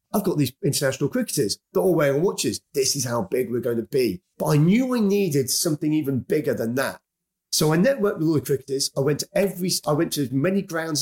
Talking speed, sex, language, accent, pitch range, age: 240 wpm, male, English, British, 135-165 Hz, 30-49